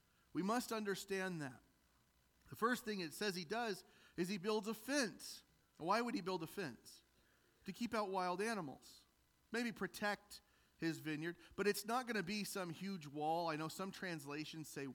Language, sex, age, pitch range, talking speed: English, male, 40-59, 140-195 Hz, 180 wpm